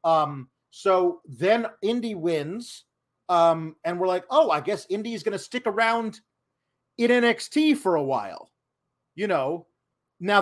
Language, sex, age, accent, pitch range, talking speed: English, male, 30-49, American, 170-255 Hz, 140 wpm